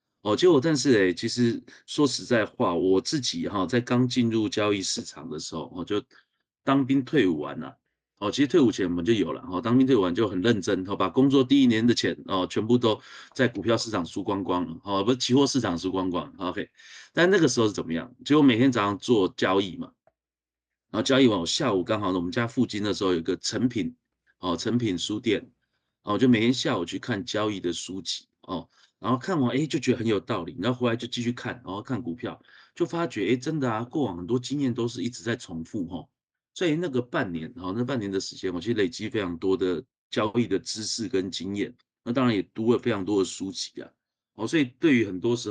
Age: 30-49